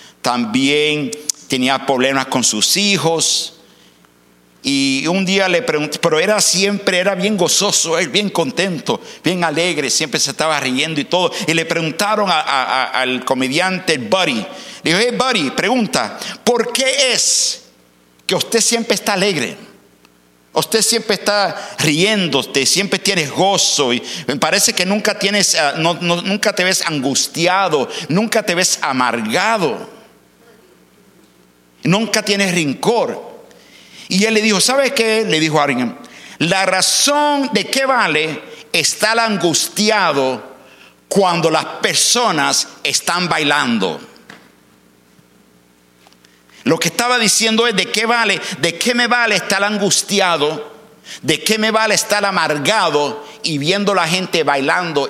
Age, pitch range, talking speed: 60-79, 150-215 Hz, 130 wpm